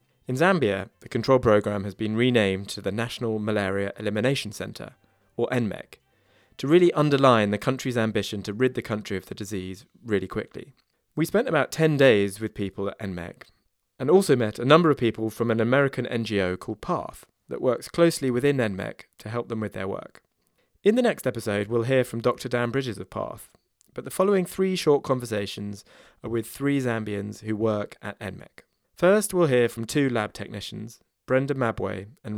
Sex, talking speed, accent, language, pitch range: male, 185 wpm, British, English, 105-135 Hz